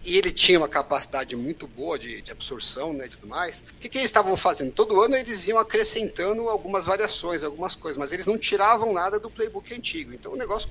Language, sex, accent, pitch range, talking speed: Portuguese, male, Brazilian, 145-220 Hz, 225 wpm